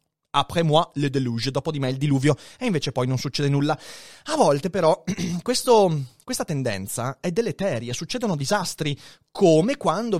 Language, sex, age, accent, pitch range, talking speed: Italian, male, 30-49, native, 135-220 Hz, 160 wpm